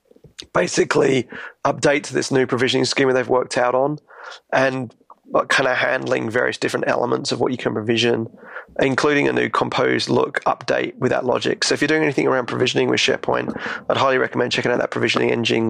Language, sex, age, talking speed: English, male, 20-39, 190 wpm